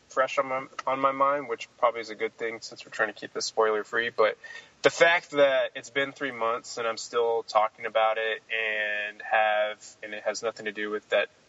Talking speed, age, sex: 225 wpm, 20-39, male